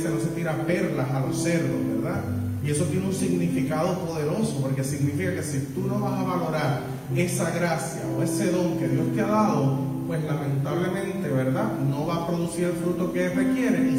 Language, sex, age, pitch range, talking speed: Spanish, male, 30-49, 135-175 Hz, 195 wpm